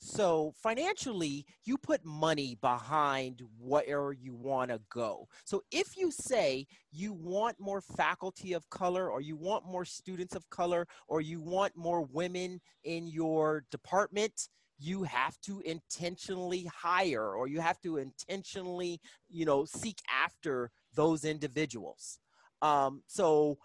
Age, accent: 30-49, American